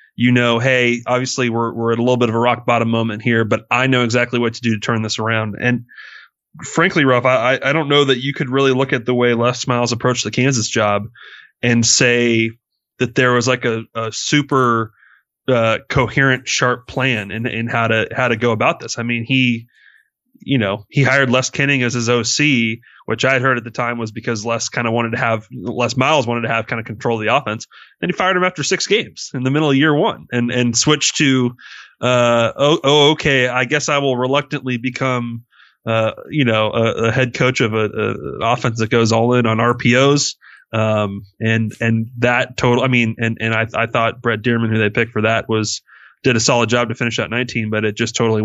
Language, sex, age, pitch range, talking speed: English, male, 20-39, 115-130 Hz, 225 wpm